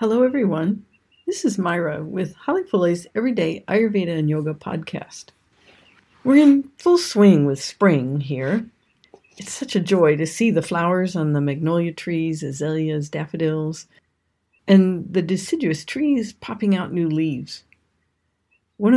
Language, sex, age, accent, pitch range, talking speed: English, female, 50-69, American, 150-200 Hz, 135 wpm